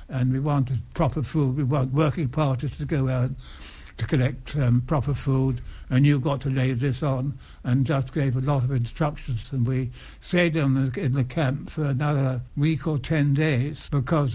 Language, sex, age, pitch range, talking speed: English, male, 60-79, 125-145 Hz, 190 wpm